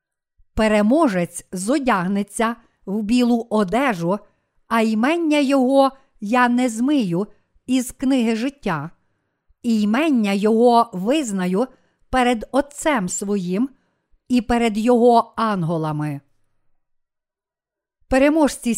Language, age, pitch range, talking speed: Ukrainian, 50-69, 200-265 Hz, 80 wpm